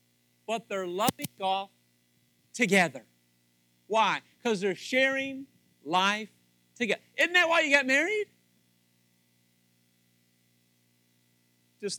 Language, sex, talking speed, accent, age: English, male, 90 wpm, American, 50-69